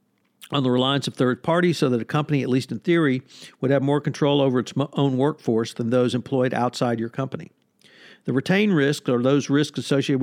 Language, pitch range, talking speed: English, 125-155 Hz, 205 wpm